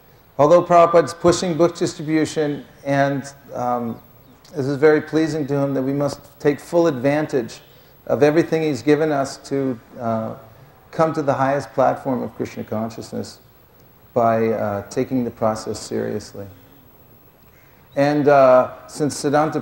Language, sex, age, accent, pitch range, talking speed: English, male, 50-69, American, 125-150 Hz, 140 wpm